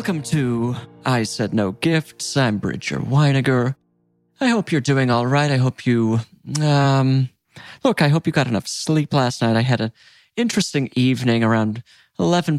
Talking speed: 165 wpm